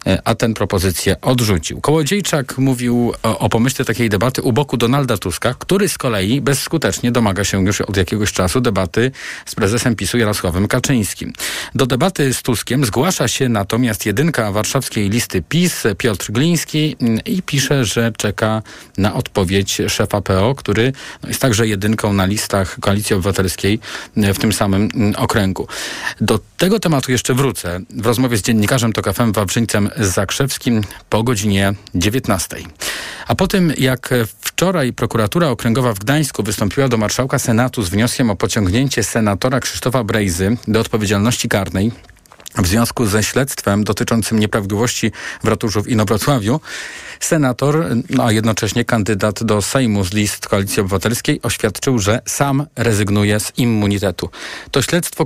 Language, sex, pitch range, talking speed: Polish, male, 105-130 Hz, 140 wpm